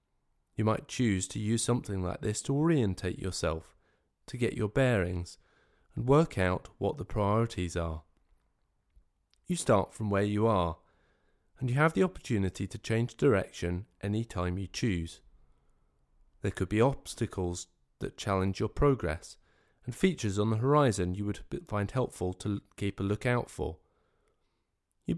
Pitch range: 85-115 Hz